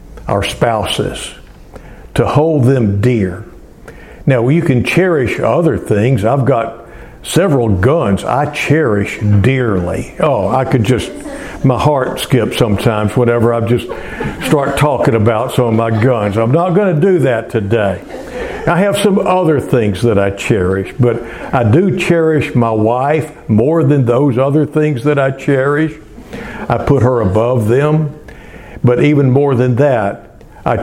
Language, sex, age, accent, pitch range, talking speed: English, male, 60-79, American, 115-155 Hz, 150 wpm